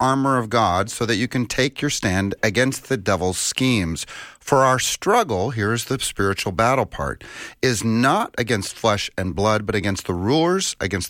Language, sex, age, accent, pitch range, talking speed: English, male, 40-59, American, 100-130 Hz, 180 wpm